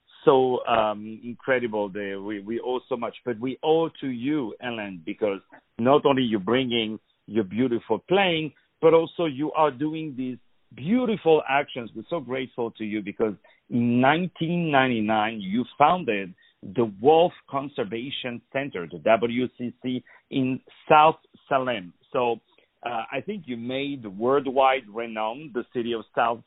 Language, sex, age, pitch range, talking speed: English, male, 50-69, 110-135 Hz, 145 wpm